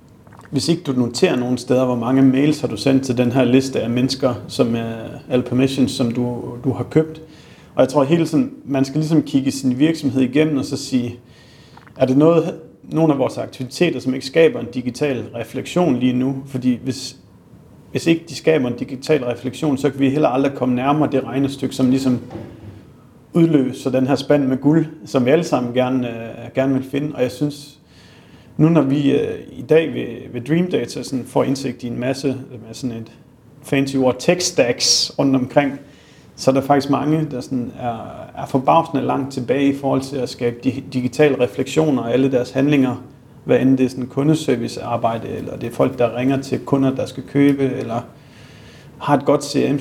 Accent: native